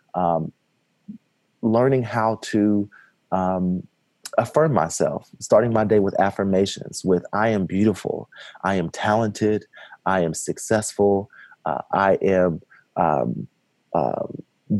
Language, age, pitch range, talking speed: English, 30-49, 90-110 Hz, 110 wpm